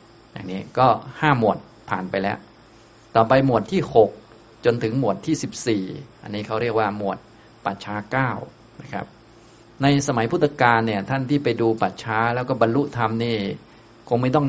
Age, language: 20-39, Thai